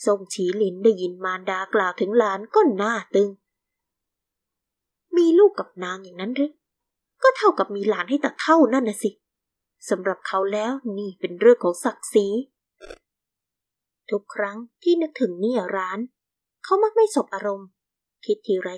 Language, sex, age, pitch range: Thai, female, 20-39, 195-270 Hz